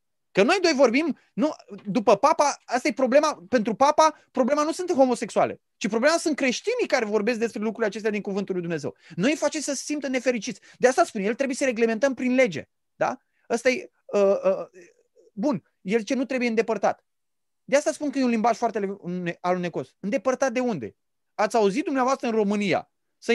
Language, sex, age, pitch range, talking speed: Romanian, male, 20-39, 205-275 Hz, 195 wpm